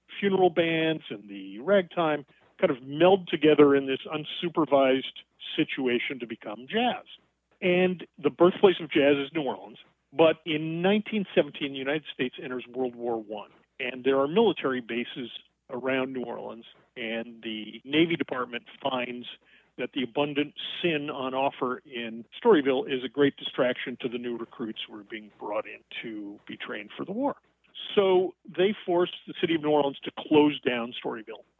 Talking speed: 165 wpm